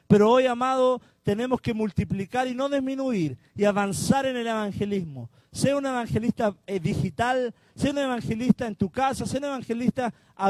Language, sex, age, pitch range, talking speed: Spanish, male, 40-59, 195-250 Hz, 160 wpm